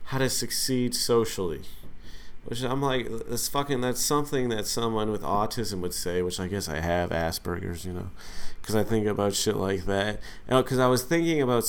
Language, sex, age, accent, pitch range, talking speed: English, male, 40-59, American, 100-130 Hz, 190 wpm